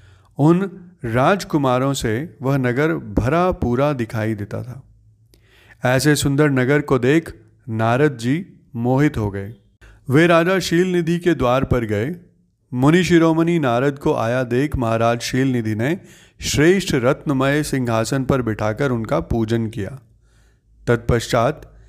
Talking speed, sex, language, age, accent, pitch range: 125 wpm, male, Hindi, 30-49, native, 115-155 Hz